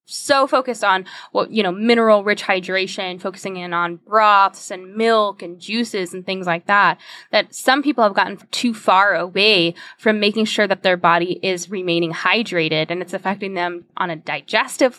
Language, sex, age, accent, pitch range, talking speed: English, female, 10-29, American, 180-225 Hz, 180 wpm